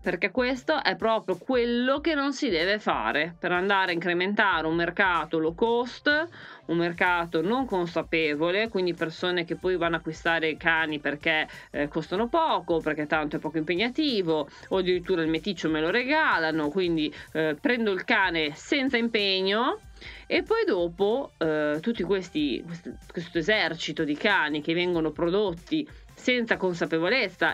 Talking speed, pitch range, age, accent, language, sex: 150 wpm, 160-240 Hz, 30-49, native, Italian, female